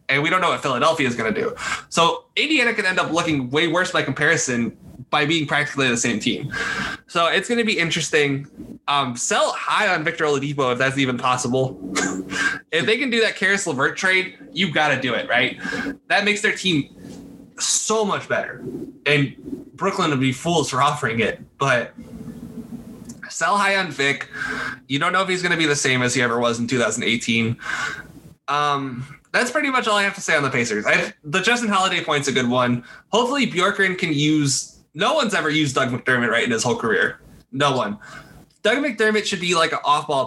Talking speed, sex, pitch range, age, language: 205 wpm, male, 140-215 Hz, 20-39, English